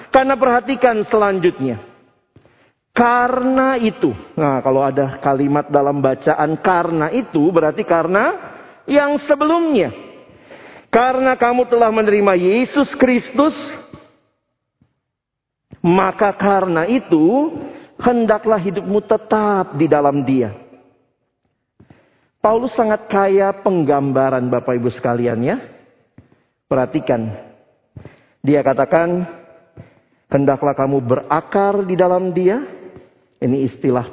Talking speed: 90 wpm